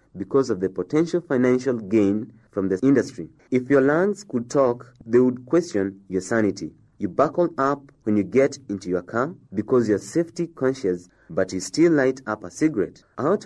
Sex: male